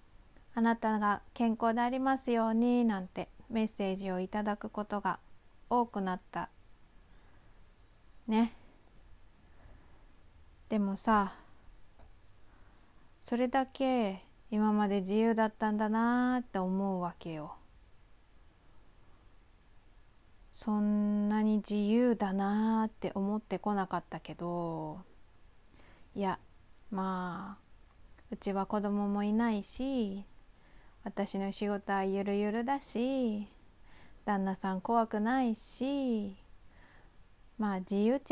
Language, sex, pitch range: Japanese, female, 185-230 Hz